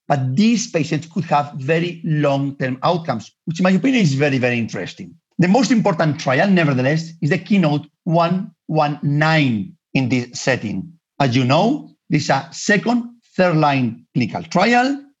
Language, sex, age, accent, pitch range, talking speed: English, male, 50-69, Spanish, 140-185 Hz, 150 wpm